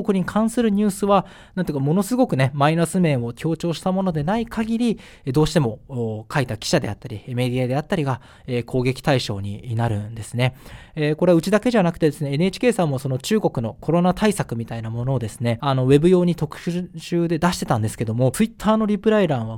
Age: 20-39